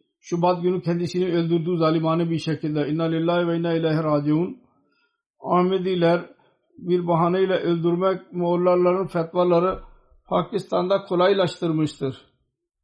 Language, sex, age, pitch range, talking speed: Turkish, male, 60-79, 160-185 Hz, 95 wpm